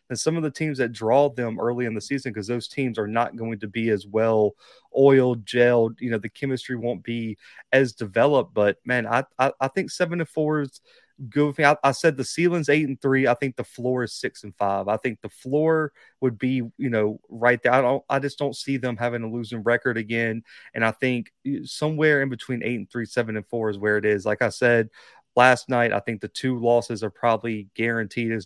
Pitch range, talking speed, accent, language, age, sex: 110-135 Hz, 235 wpm, American, English, 30-49, male